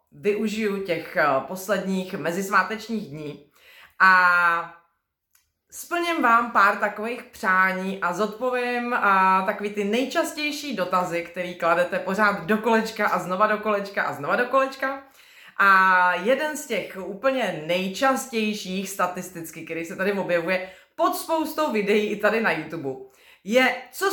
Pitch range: 180-245 Hz